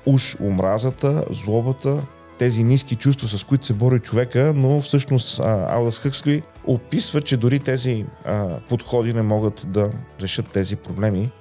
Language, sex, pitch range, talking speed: Bulgarian, male, 105-130 Hz, 135 wpm